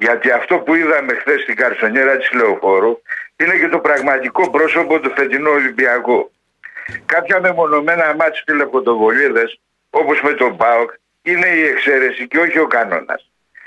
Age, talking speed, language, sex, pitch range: 60-79, 140 wpm, Greek, male, 135-195 Hz